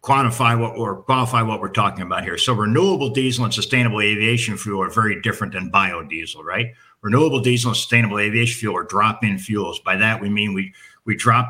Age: 60-79